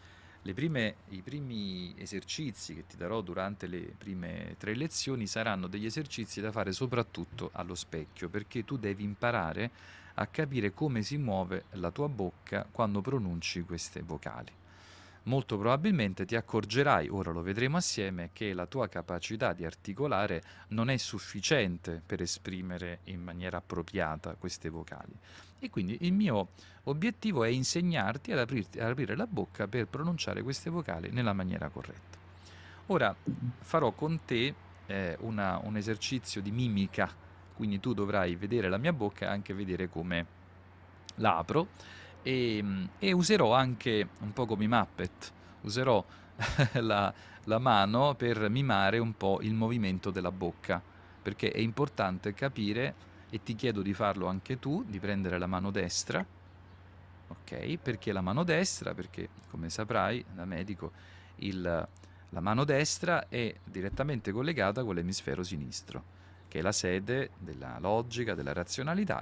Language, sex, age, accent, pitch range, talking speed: Italian, male, 40-59, native, 90-115 Hz, 140 wpm